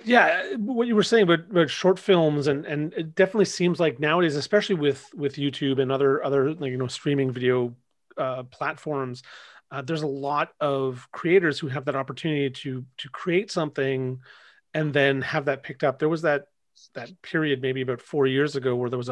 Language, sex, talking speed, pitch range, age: English, male, 200 wpm, 130-155 Hz, 30-49